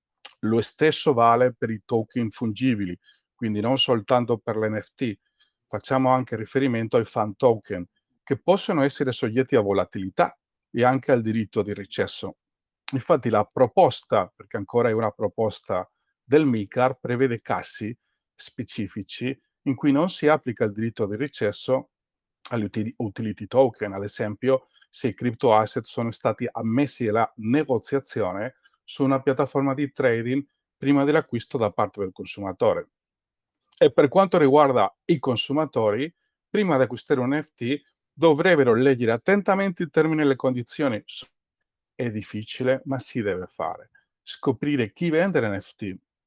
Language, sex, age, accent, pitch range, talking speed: Italian, male, 50-69, native, 115-145 Hz, 135 wpm